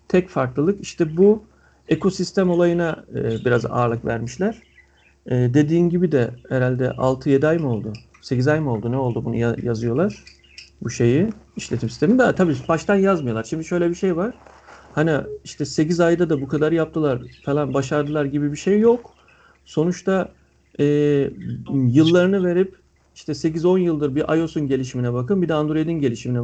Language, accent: Turkish, native